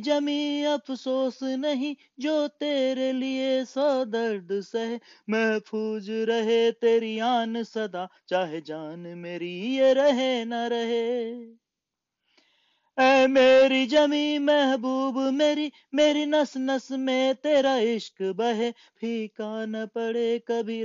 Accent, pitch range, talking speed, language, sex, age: native, 190-255 Hz, 105 wpm, Hindi, male, 30-49